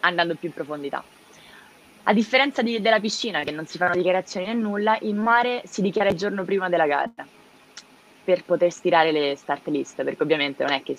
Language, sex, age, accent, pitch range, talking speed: Italian, female, 20-39, native, 150-210 Hz, 195 wpm